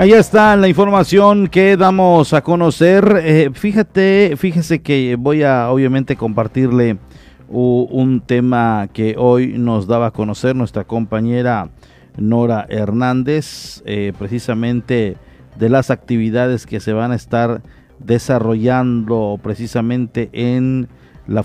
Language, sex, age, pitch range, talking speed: Spanish, male, 40-59, 105-130 Hz, 120 wpm